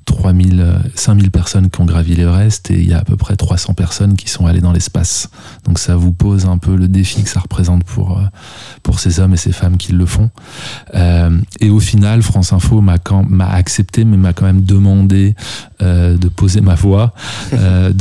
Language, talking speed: French, 210 wpm